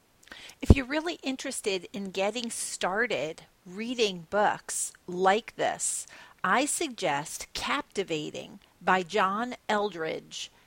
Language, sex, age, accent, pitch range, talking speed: English, female, 40-59, American, 190-260 Hz, 95 wpm